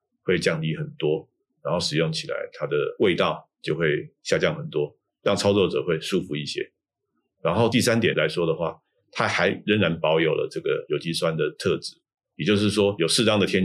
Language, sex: Chinese, male